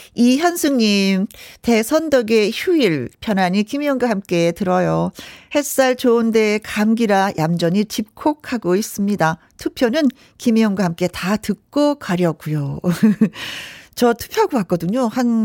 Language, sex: Korean, female